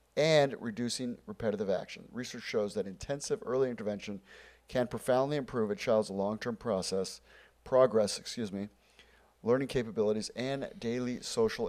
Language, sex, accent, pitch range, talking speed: English, male, American, 105-130 Hz, 130 wpm